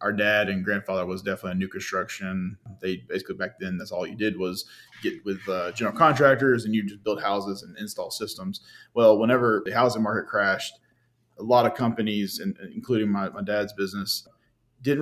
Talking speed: 190 wpm